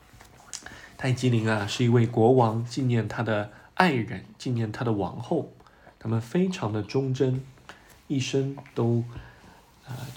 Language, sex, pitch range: Chinese, male, 110-145 Hz